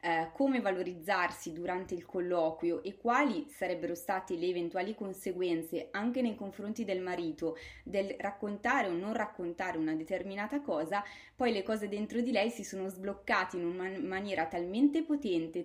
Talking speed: 150 wpm